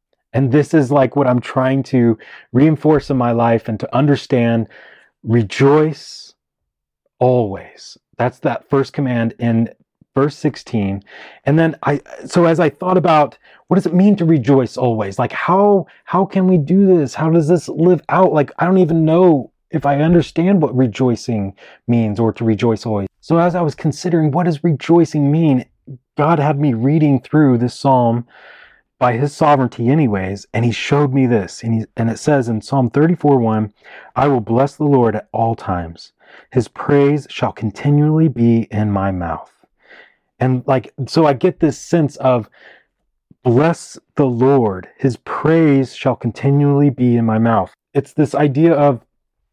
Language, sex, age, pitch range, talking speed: English, male, 30-49, 120-155 Hz, 165 wpm